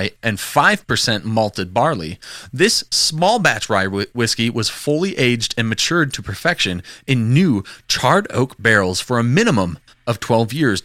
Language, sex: English, male